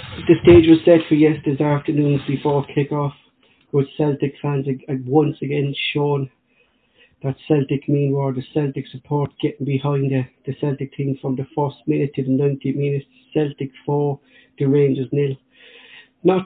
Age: 60-79